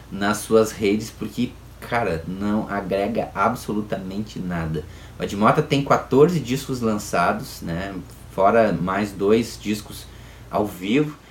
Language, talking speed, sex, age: Portuguese, 115 wpm, male, 20-39